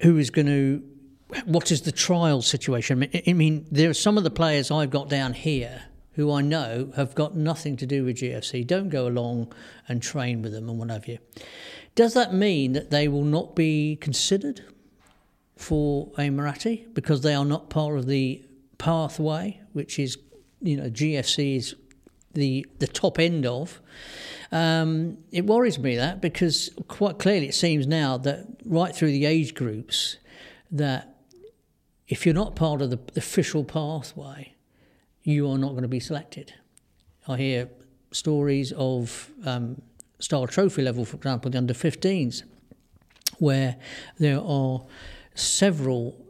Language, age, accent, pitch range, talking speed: English, 50-69, British, 130-165 Hz, 160 wpm